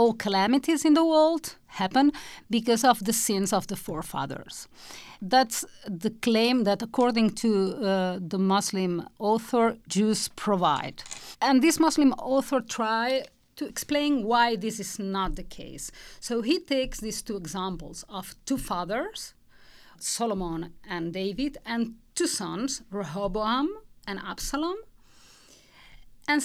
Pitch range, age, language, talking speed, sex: 195-270 Hz, 40-59, English, 130 wpm, female